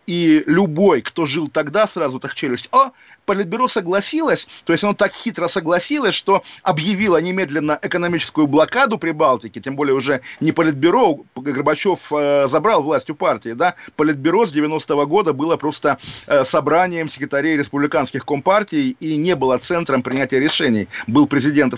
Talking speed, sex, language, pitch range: 145 wpm, male, Russian, 150-195 Hz